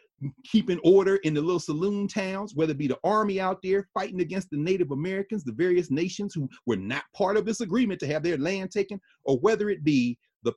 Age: 40-59